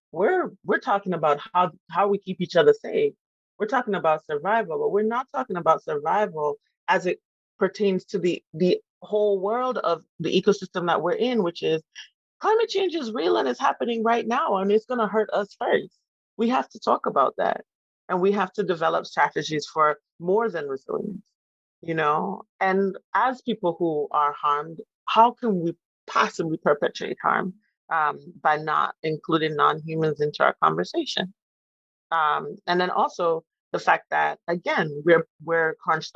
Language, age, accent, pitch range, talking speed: English, 30-49, American, 165-215 Hz, 170 wpm